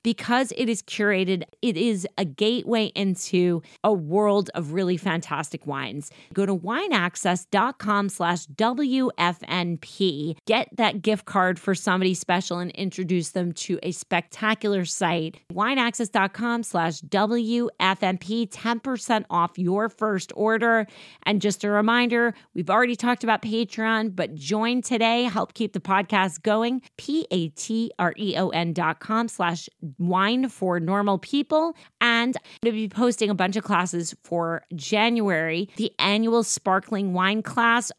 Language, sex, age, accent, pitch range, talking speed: English, female, 30-49, American, 180-225 Hz, 135 wpm